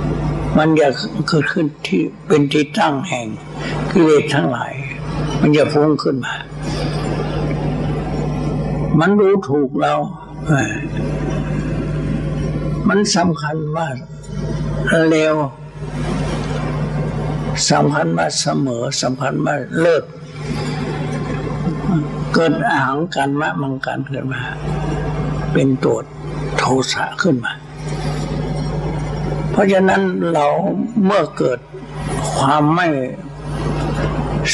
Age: 60-79